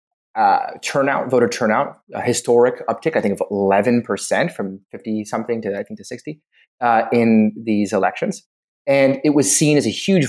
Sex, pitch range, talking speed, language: male, 105-150 Hz, 175 wpm, English